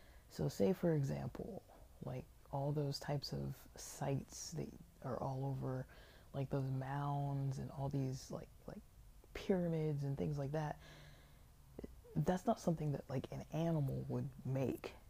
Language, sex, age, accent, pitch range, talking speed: English, female, 20-39, American, 130-145 Hz, 145 wpm